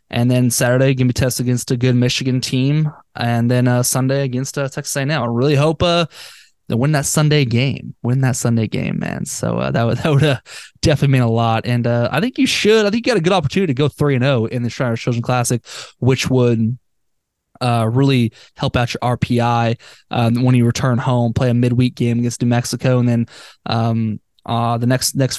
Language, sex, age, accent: English, male, 20-39, American